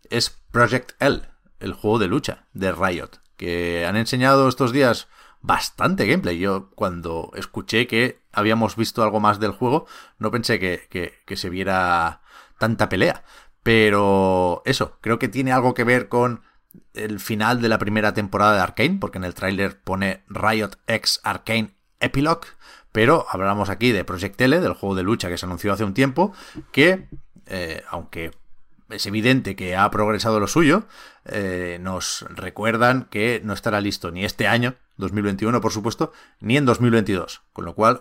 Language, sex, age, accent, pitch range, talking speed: Spanish, male, 30-49, Spanish, 95-120 Hz, 165 wpm